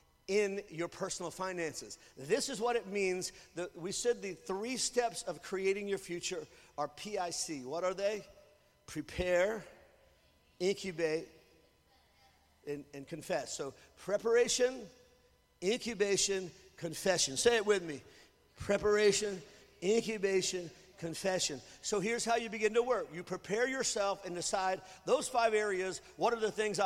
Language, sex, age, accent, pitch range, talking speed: English, male, 50-69, American, 180-240 Hz, 130 wpm